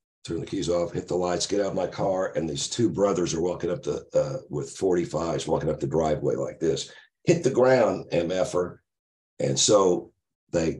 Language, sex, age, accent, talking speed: English, male, 50-69, American, 200 wpm